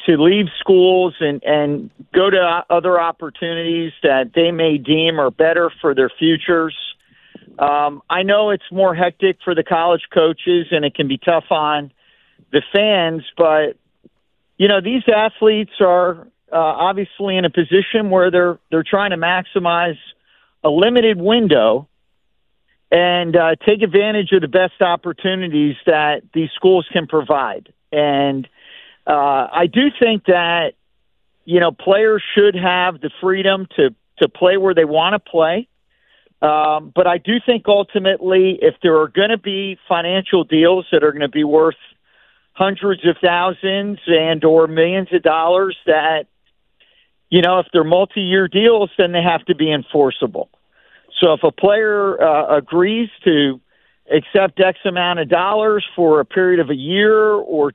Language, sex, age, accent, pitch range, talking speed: English, male, 50-69, American, 160-195 Hz, 155 wpm